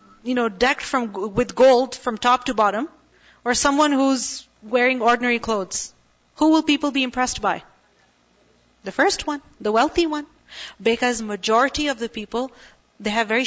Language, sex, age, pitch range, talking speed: English, female, 30-49, 205-275 Hz, 160 wpm